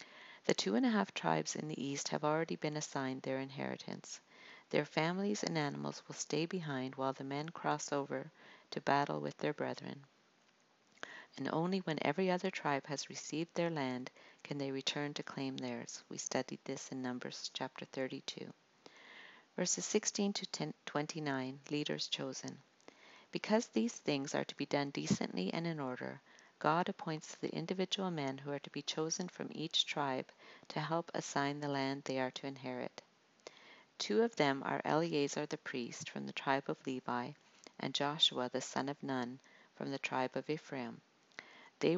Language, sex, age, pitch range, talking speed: English, female, 50-69, 135-165 Hz, 170 wpm